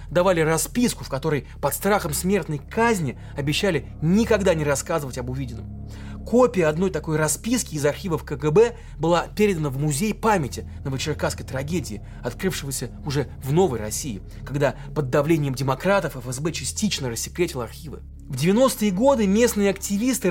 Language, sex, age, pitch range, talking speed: Russian, male, 30-49, 140-200 Hz, 135 wpm